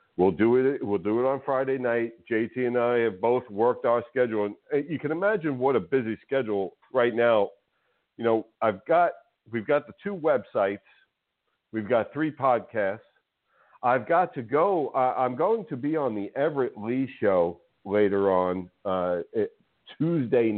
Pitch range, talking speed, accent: 105-150 Hz, 165 wpm, American